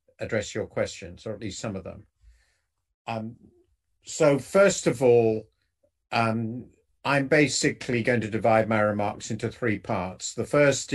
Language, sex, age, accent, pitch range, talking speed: Portuguese, male, 50-69, British, 100-120 Hz, 150 wpm